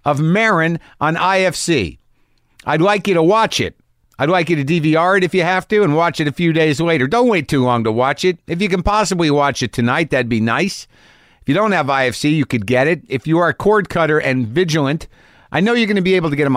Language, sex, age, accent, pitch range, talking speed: English, male, 50-69, American, 125-175 Hz, 255 wpm